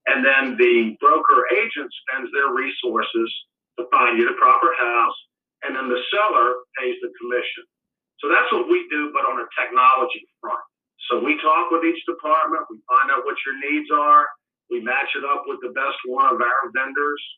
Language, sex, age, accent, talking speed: English, male, 50-69, American, 190 wpm